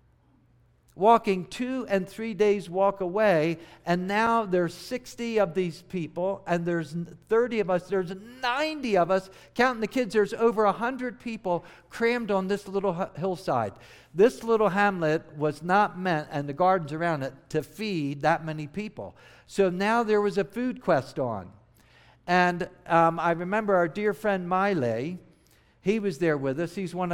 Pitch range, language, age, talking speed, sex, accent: 155-205 Hz, English, 60-79, 165 wpm, male, American